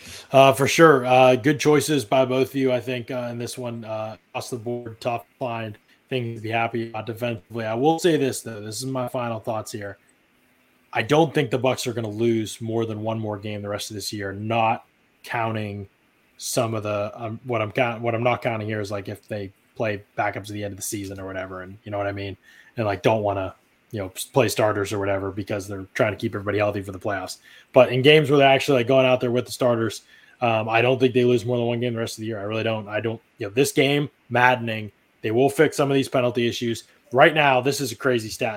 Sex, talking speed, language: male, 260 wpm, English